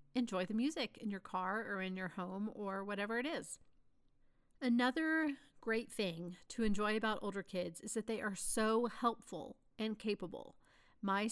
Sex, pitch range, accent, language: female, 190-235 Hz, American, English